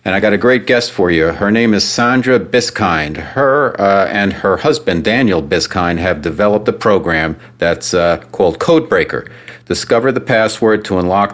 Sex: male